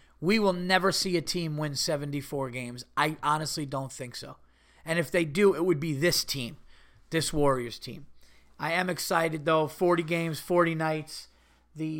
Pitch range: 125-165 Hz